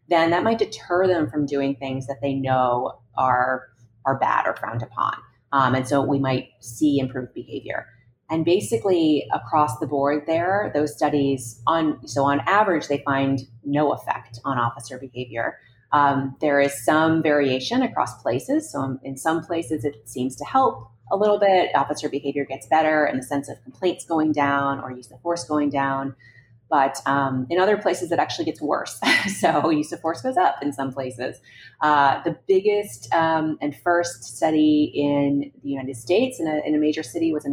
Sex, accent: female, American